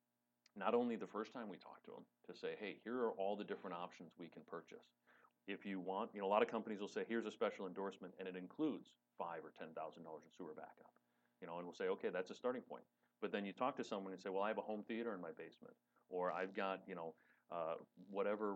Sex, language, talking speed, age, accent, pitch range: male, English, 255 wpm, 40-59, American, 85-115 Hz